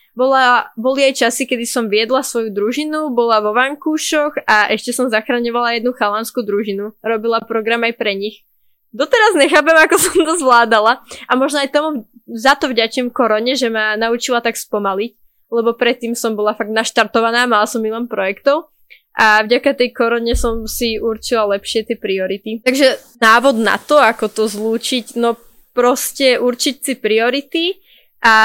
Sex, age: female, 20-39